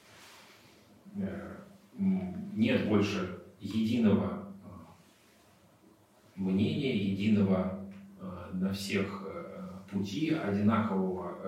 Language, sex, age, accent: Russian, male, 30-49, native